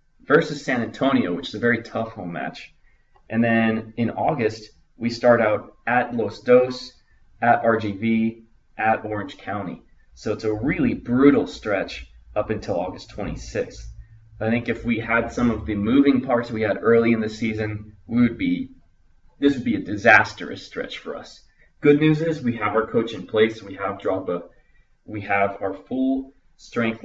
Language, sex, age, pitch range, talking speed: English, male, 20-39, 105-120 Hz, 175 wpm